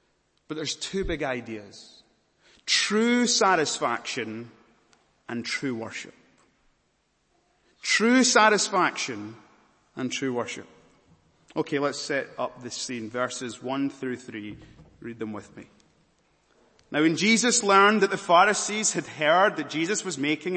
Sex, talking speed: male, 125 wpm